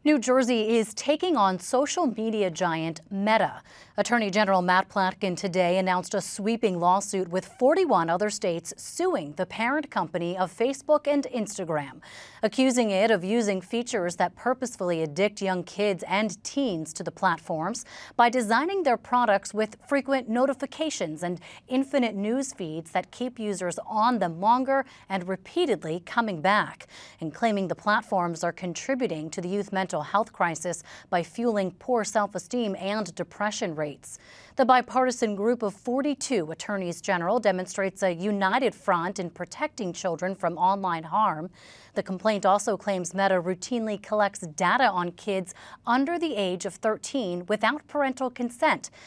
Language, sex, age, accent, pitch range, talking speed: English, female, 30-49, American, 180-240 Hz, 145 wpm